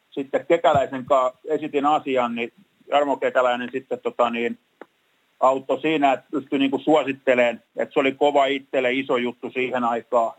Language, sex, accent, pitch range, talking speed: Finnish, male, native, 125-145 Hz, 125 wpm